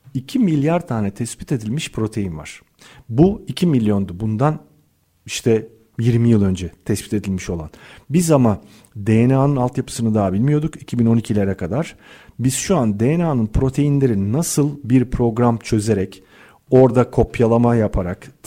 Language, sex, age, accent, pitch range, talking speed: Turkish, male, 40-59, native, 110-160 Hz, 125 wpm